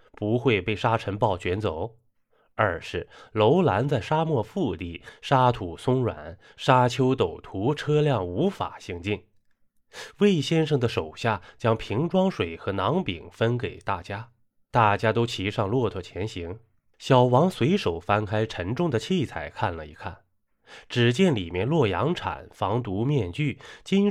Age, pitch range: 20-39, 100-140 Hz